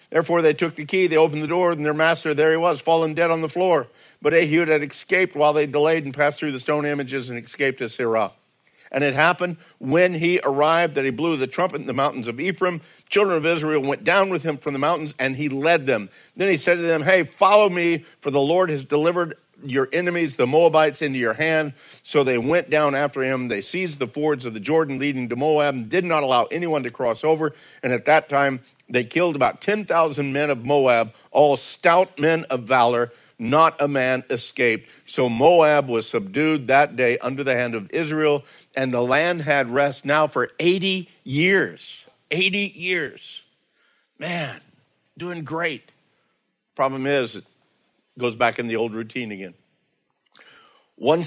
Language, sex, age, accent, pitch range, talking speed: English, male, 50-69, American, 120-160 Hz, 195 wpm